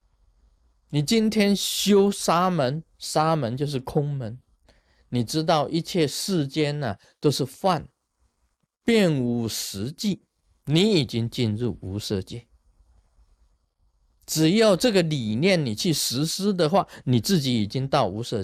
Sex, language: male, Chinese